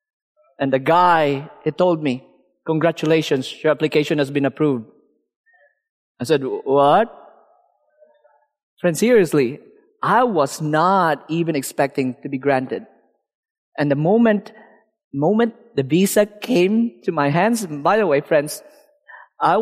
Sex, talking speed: male, 125 wpm